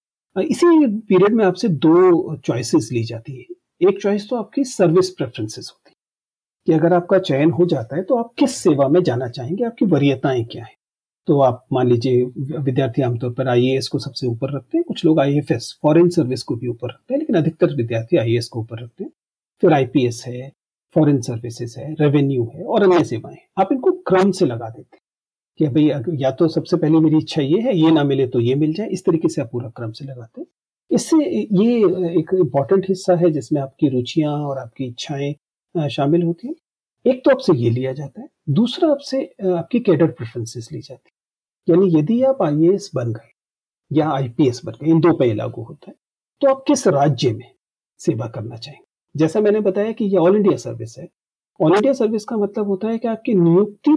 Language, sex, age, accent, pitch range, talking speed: Hindi, male, 40-59, native, 130-190 Hz, 200 wpm